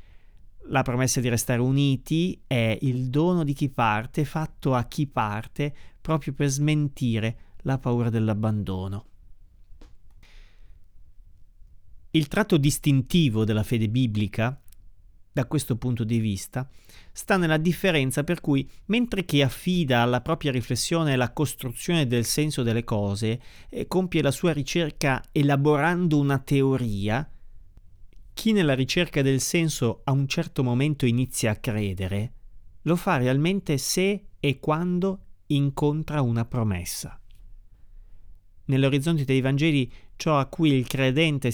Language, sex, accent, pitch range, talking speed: Italian, male, native, 105-145 Hz, 125 wpm